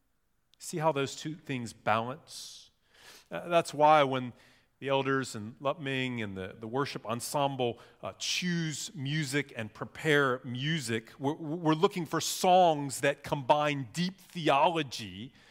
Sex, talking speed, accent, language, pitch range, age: male, 135 wpm, American, English, 135-170 Hz, 40-59